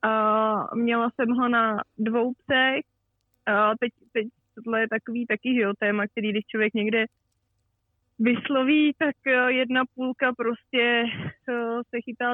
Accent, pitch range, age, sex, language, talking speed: native, 210-235 Hz, 20-39, female, Czech, 140 wpm